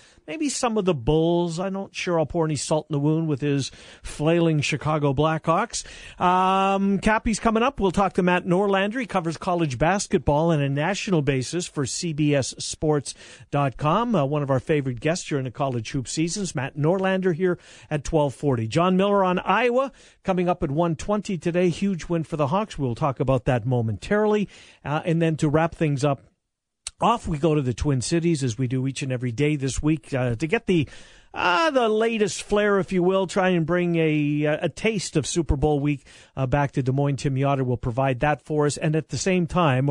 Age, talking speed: 50-69, 200 wpm